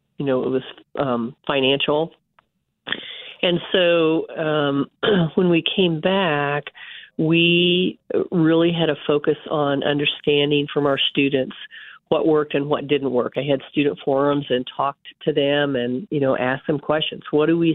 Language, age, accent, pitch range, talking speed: English, 40-59, American, 140-155 Hz, 155 wpm